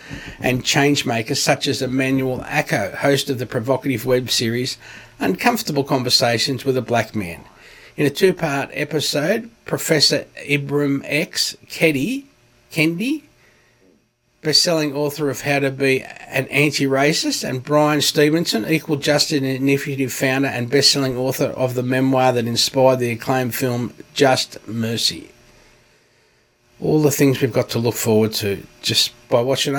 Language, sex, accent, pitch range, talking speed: English, male, Australian, 125-150 Hz, 145 wpm